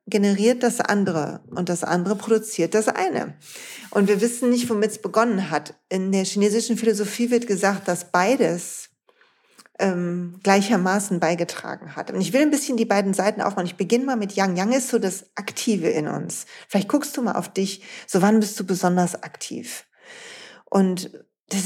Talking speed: 175 wpm